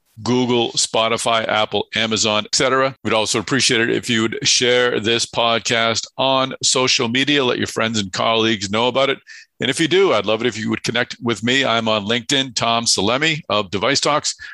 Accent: American